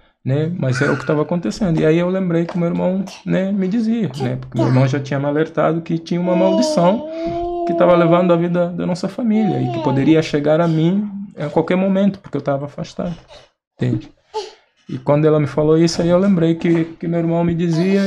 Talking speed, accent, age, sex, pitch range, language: 220 wpm, Brazilian, 20-39, male, 140-175 Hz, Portuguese